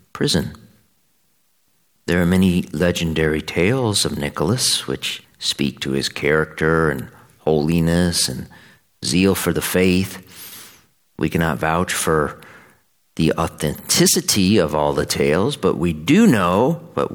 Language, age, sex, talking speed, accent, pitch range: English, 50-69, male, 120 wpm, American, 75-95 Hz